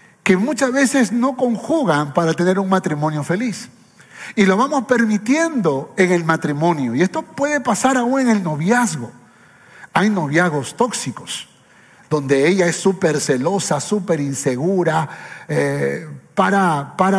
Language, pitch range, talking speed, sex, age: Spanish, 165-230 Hz, 135 wpm, male, 40-59